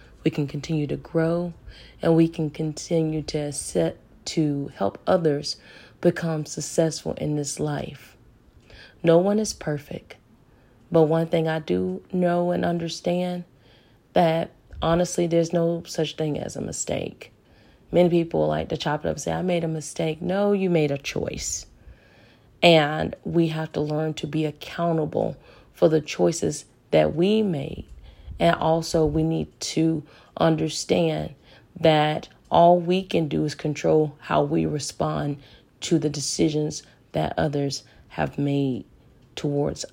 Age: 40-59